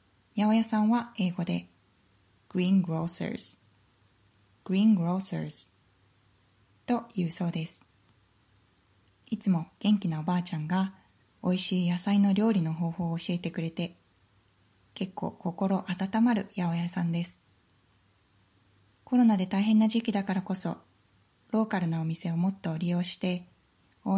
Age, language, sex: 20-39, Japanese, female